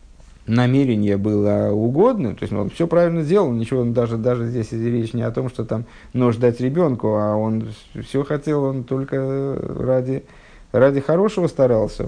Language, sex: Russian, male